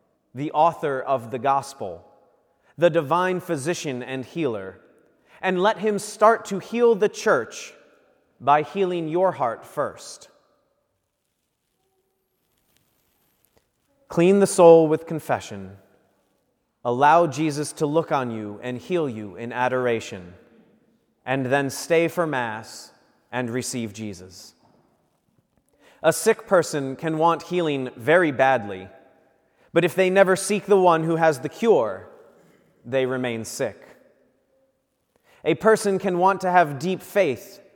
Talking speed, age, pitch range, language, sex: 120 wpm, 30-49, 125-180 Hz, English, male